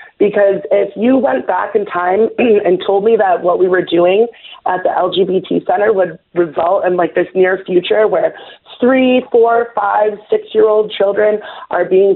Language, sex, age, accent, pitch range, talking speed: English, female, 30-49, American, 185-225 Hz, 170 wpm